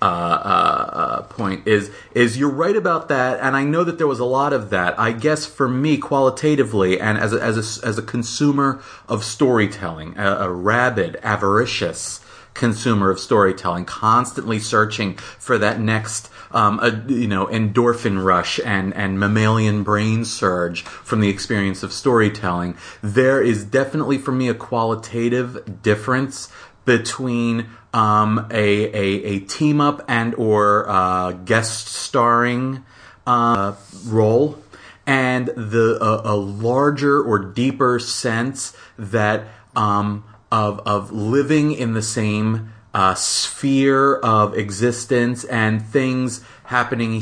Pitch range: 105-130 Hz